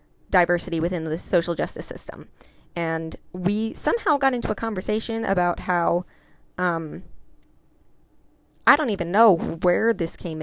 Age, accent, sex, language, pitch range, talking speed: 20-39, American, female, English, 170-210 Hz, 130 wpm